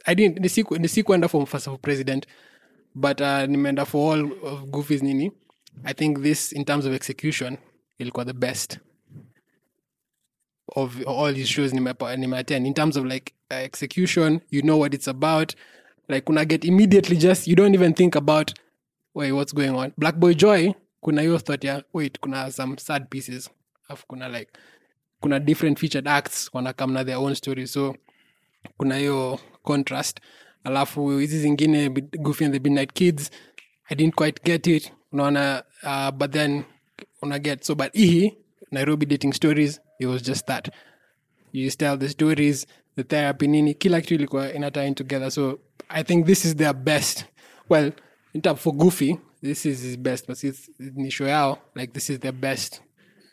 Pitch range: 135-155 Hz